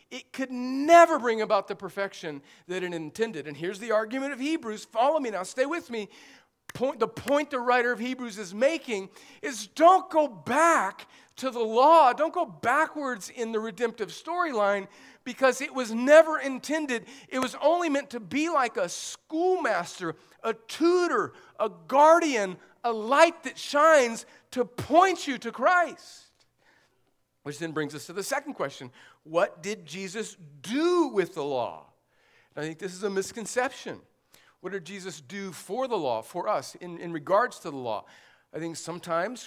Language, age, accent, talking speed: English, 50-69, American, 165 wpm